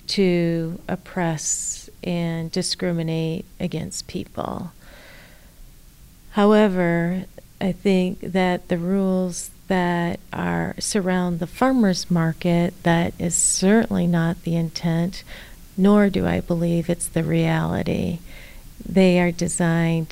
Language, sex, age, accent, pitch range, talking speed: English, female, 40-59, American, 170-195 Hz, 100 wpm